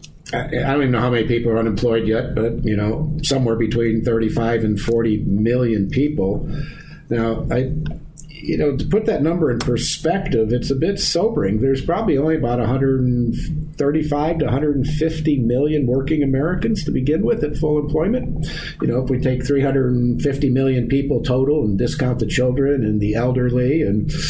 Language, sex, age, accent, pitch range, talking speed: English, male, 50-69, American, 115-150 Hz, 165 wpm